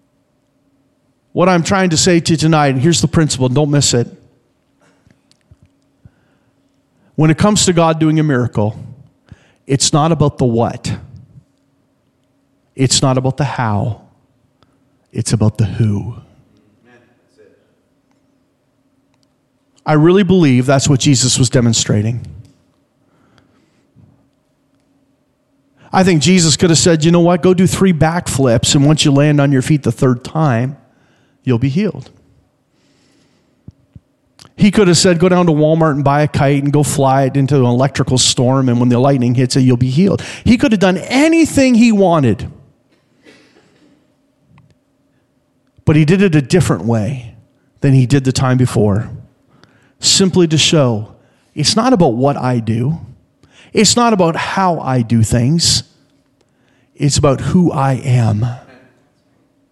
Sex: male